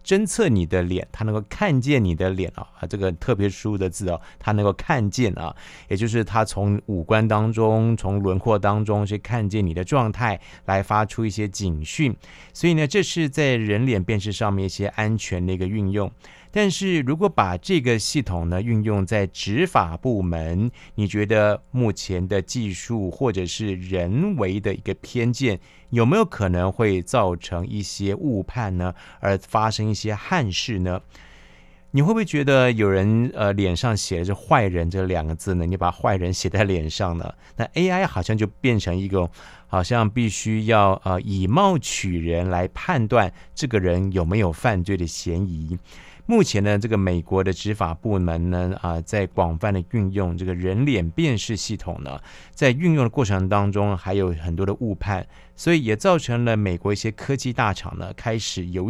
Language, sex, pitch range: Chinese, male, 90-115 Hz